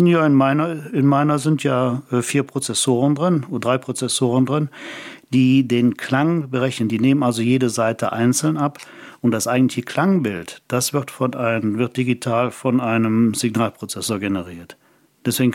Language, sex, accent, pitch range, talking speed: German, male, German, 115-135 Hz, 145 wpm